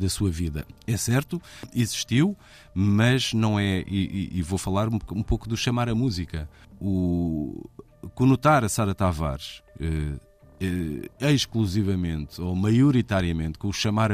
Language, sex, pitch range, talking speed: Portuguese, male, 90-120 Hz, 145 wpm